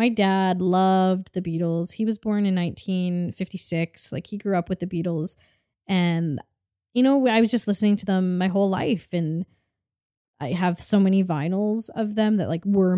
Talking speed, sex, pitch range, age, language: 185 wpm, female, 170-215 Hz, 20-39, English